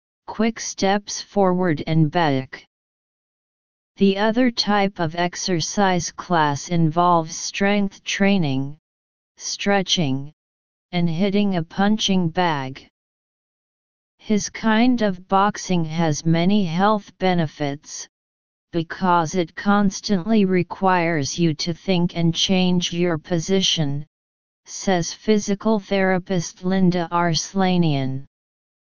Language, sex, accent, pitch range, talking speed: English, female, American, 160-195 Hz, 90 wpm